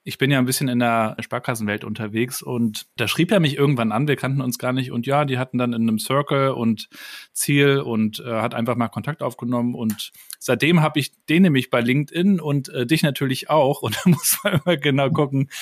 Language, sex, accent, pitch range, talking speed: German, male, German, 120-145 Hz, 225 wpm